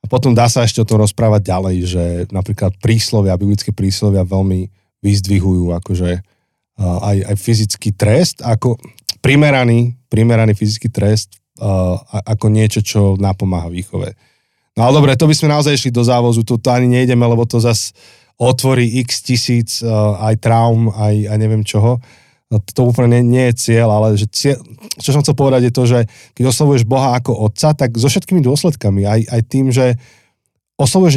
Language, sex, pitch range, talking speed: Slovak, male, 105-125 Hz, 165 wpm